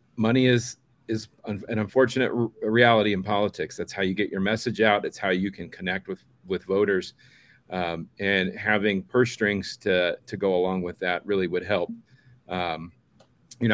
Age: 40-59